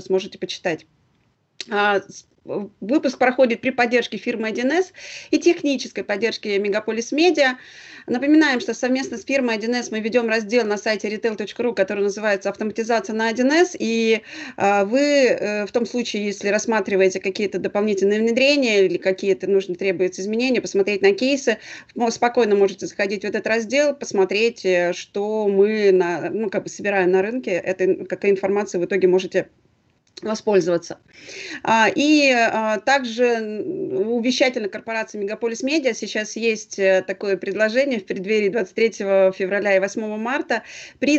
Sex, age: female, 30-49